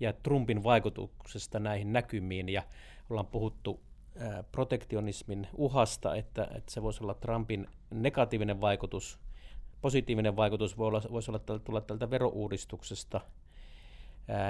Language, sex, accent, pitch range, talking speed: Finnish, male, native, 100-115 Hz, 120 wpm